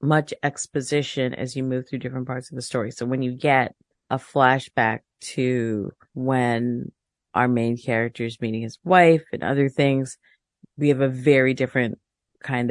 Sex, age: female, 40-59